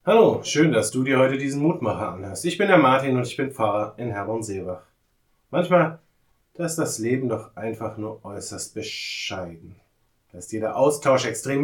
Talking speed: 175 wpm